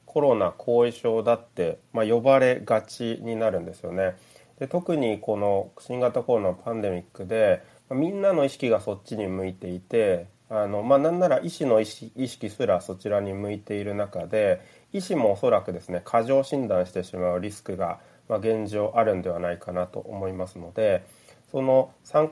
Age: 30-49